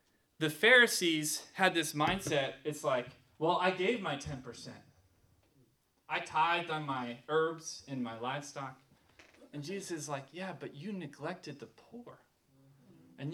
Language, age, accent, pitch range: English, 20-39, American, 145-205 Hz